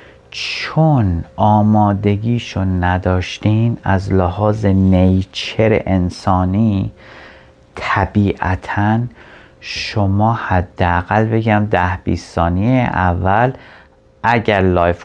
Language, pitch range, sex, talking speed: Persian, 90-125 Hz, male, 70 wpm